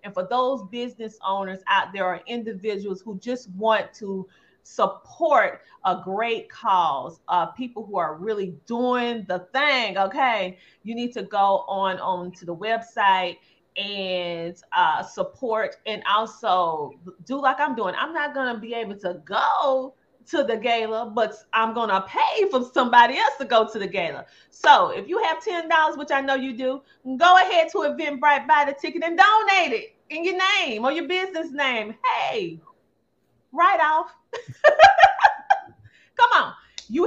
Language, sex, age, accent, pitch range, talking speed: English, female, 30-49, American, 185-285 Hz, 165 wpm